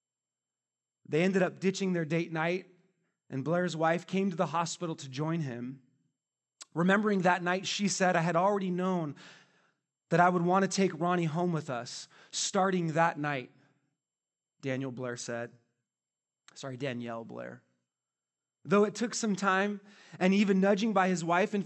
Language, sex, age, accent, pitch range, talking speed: English, male, 30-49, American, 140-195 Hz, 160 wpm